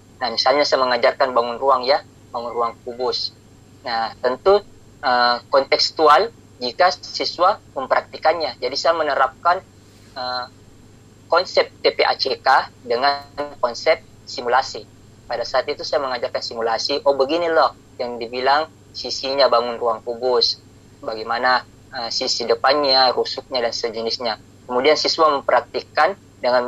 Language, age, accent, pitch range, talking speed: Indonesian, 20-39, native, 115-145 Hz, 115 wpm